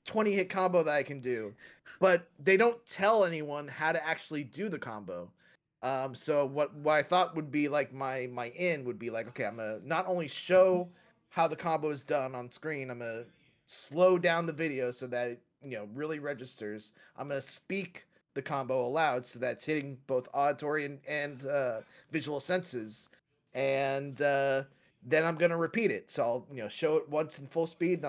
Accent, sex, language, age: American, male, English, 30-49